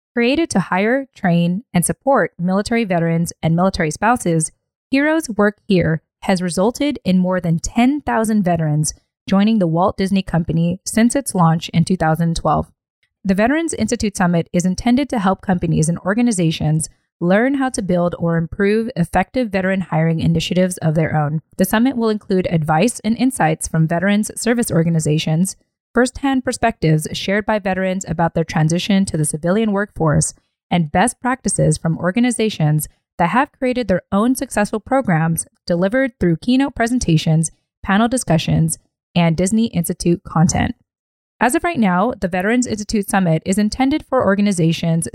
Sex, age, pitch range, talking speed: female, 20-39, 170-230 Hz, 150 wpm